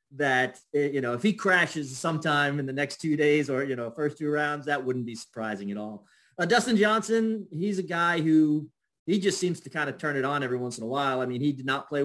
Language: English